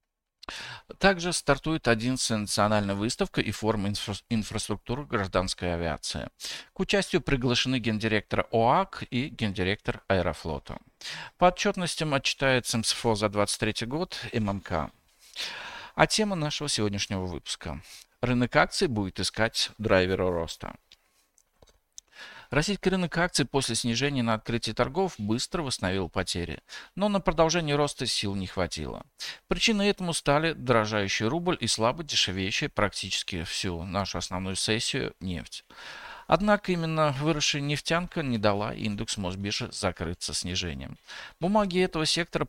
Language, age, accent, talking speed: Russian, 50-69, native, 120 wpm